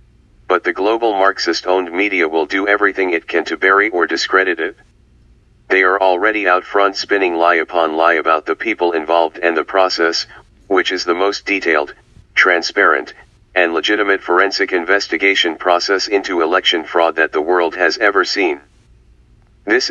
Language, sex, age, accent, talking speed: English, male, 40-59, American, 155 wpm